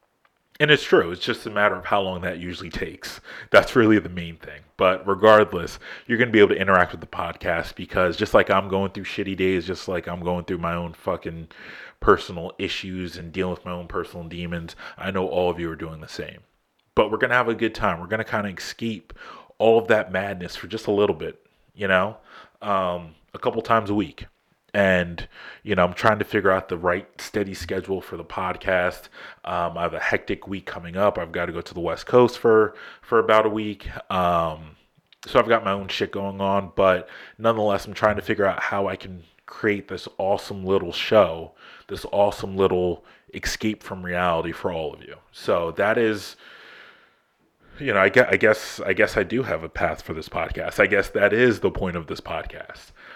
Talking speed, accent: 215 wpm, American